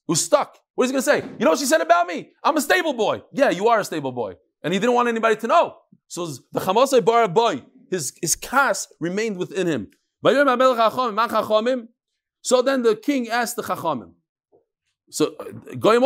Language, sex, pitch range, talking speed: English, male, 165-245 Hz, 195 wpm